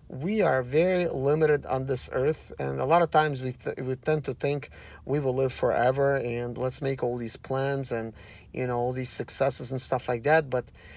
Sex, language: male, English